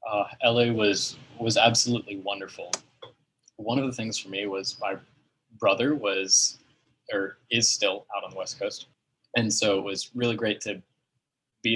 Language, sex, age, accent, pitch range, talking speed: English, male, 20-39, American, 105-135 Hz, 165 wpm